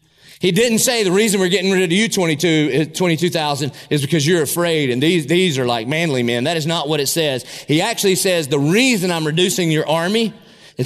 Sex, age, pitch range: male, 30-49, 130-175 Hz